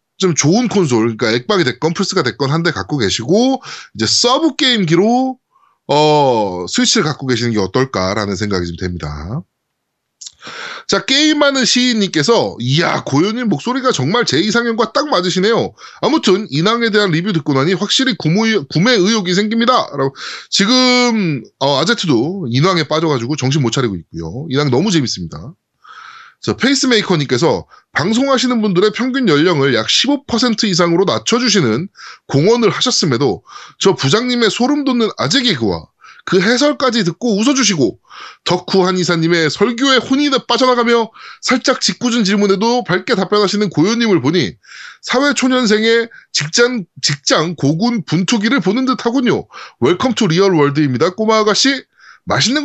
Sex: male